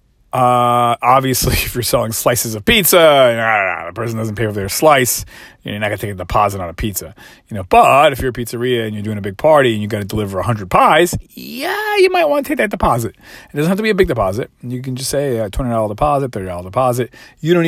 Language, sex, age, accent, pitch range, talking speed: English, male, 30-49, American, 95-125 Hz, 260 wpm